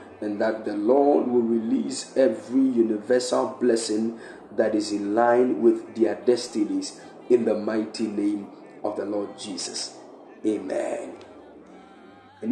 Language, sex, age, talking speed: English, male, 50-69, 125 wpm